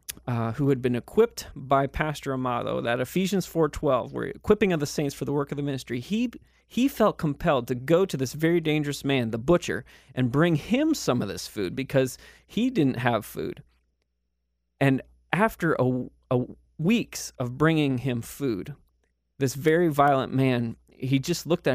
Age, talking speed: 30-49, 175 wpm